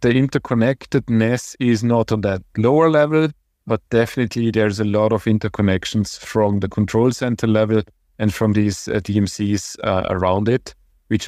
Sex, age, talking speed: male, 30-49, 155 wpm